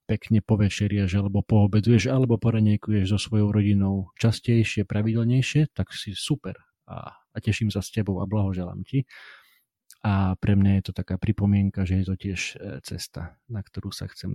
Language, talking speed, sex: Slovak, 165 wpm, male